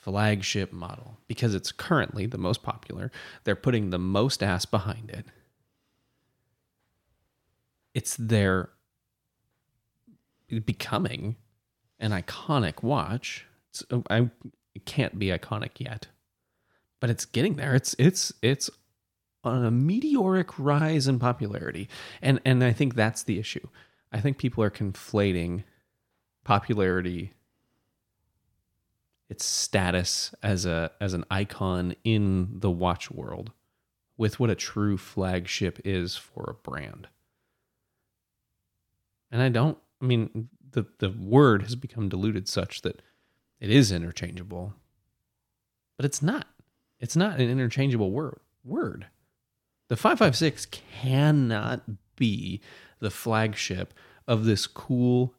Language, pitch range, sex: English, 95-125 Hz, male